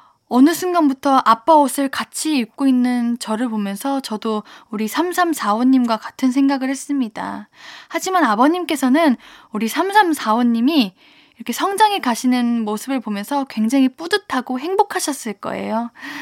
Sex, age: female, 10-29